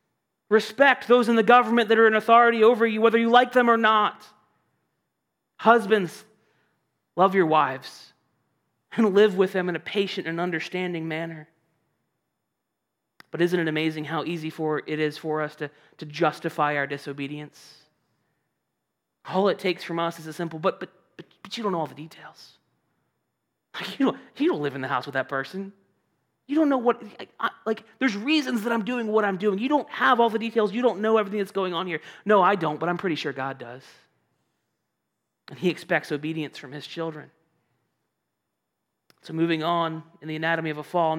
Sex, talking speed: male, 190 wpm